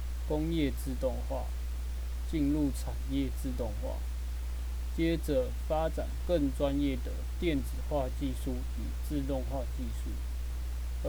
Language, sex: Chinese, male